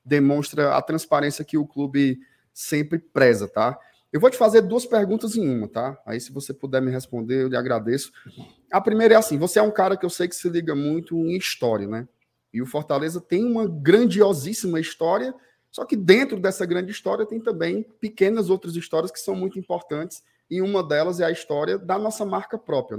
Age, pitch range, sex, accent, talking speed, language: 20-39, 150-190 Hz, male, Brazilian, 200 wpm, Portuguese